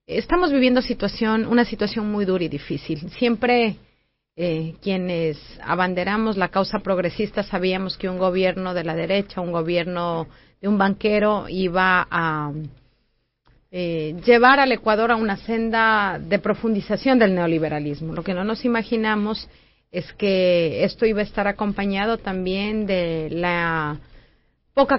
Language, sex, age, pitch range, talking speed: Spanish, female, 40-59, 170-210 Hz, 135 wpm